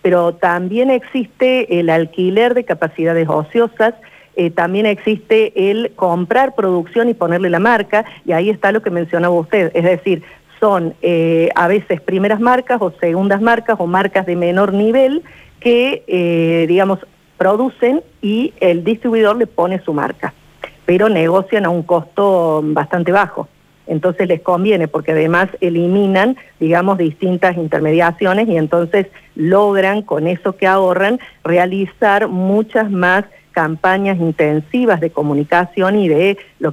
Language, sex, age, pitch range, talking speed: Spanish, female, 50-69, 170-210 Hz, 140 wpm